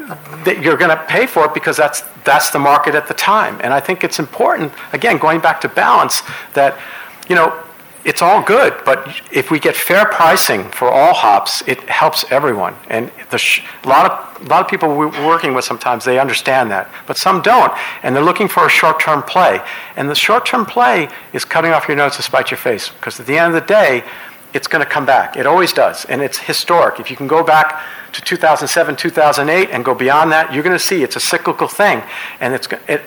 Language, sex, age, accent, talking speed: English, male, 50-69, American, 220 wpm